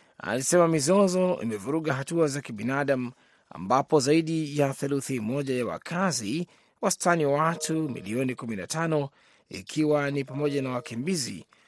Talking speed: 120 wpm